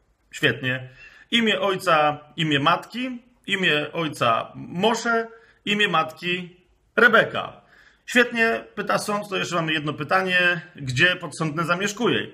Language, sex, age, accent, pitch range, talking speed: Polish, male, 40-59, native, 160-225 Hz, 105 wpm